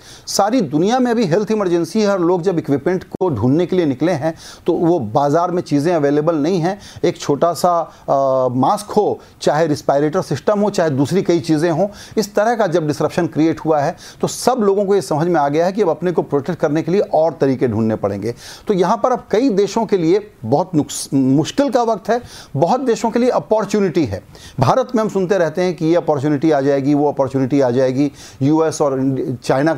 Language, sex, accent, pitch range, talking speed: Hindi, male, native, 140-190 Hz, 215 wpm